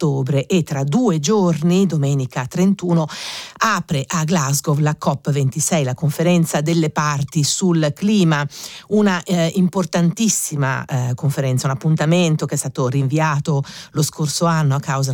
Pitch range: 145-180 Hz